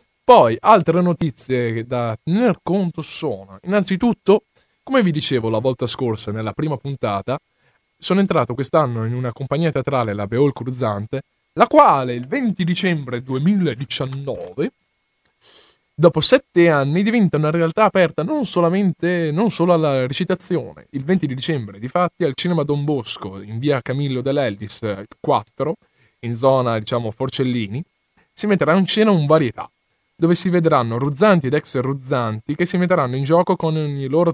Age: 20-39